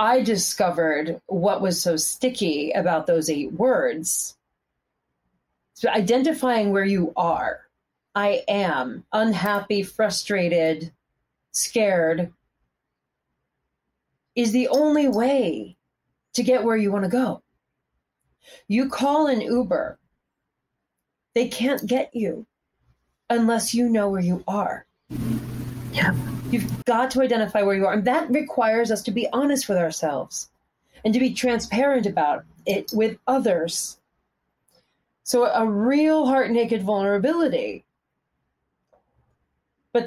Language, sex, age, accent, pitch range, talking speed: English, female, 30-49, American, 170-250 Hz, 110 wpm